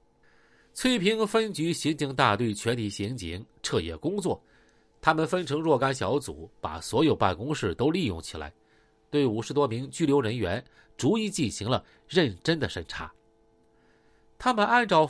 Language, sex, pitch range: Chinese, male, 110-170 Hz